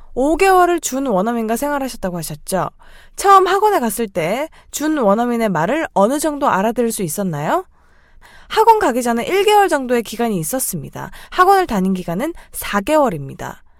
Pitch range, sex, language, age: 195-320 Hz, female, Korean, 20-39